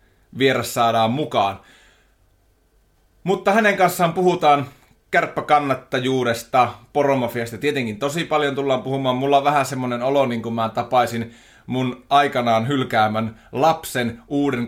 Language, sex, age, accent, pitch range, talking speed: Finnish, male, 30-49, native, 120-150 Hz, 115 wpm